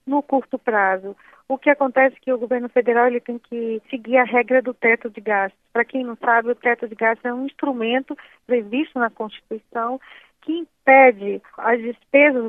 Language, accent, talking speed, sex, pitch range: Portuguese, Brazilian, 185 wpm, female, 225-260 Hz